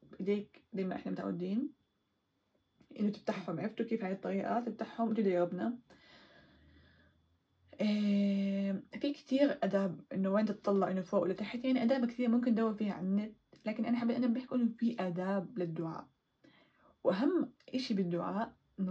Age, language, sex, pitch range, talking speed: 10-29, Arabic, female, 195-235 Hz, 145 wpm